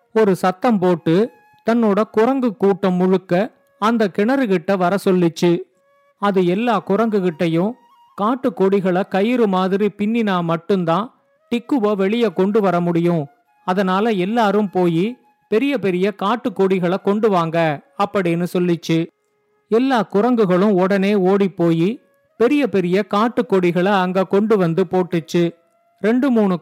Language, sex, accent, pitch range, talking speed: Tamil, male, native, 180-225 Hz, 115 wpm